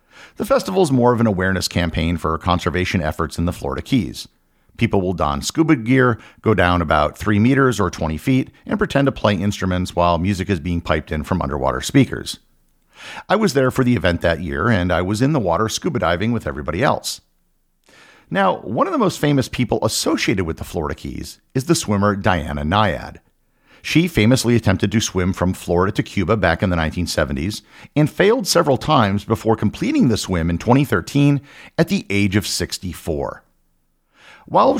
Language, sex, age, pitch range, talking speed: English, male, 50-69, 85-125 Hz, 185 wpm